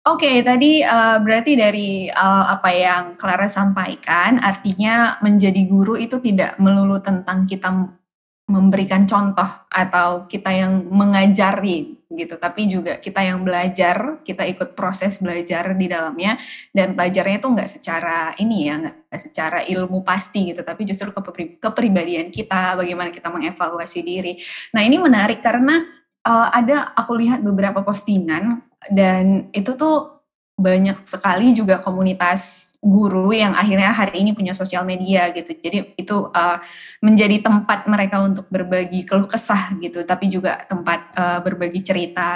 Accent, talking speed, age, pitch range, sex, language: native, 135 wpm, 20-39, 185-220 Hz, female, Indonesian